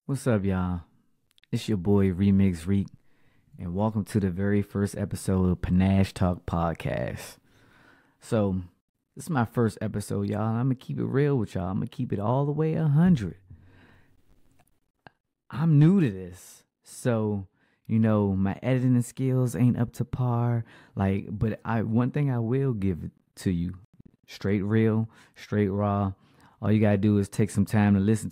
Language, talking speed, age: English, 175 wpm, 20-39